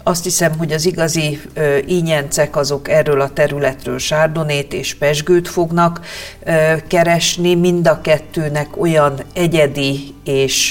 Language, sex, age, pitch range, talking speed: Hungarian, female, 50-69, 140-165 Hz, 130 wpm